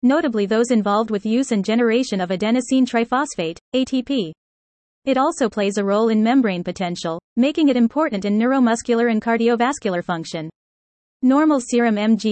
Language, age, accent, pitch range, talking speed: English, 30-49, American, 205-255 Hz, 145 wpm